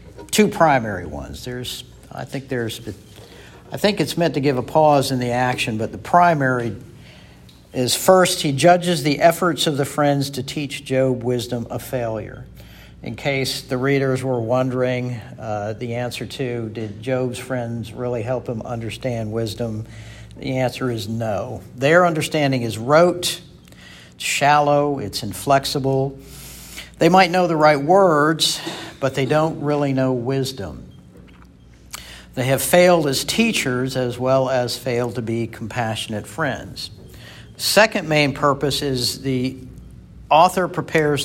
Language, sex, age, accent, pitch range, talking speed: English, male, 50-69, American, 115-145 Hz, 140 wpm